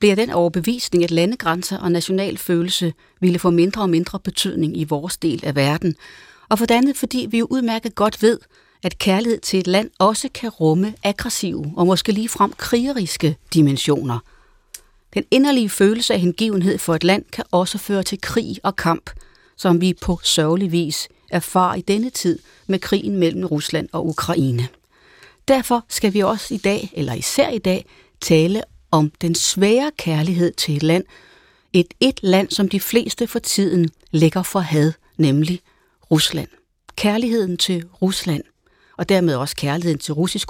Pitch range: 170-220 Hz